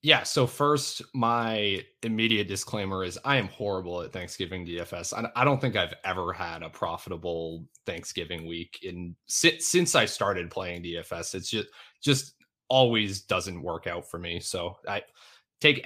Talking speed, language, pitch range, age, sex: 160 wpm, English, 95-125 Hz, 20-39, male